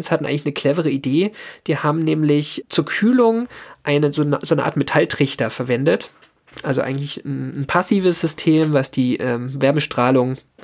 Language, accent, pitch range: German, German, 135-160 Hz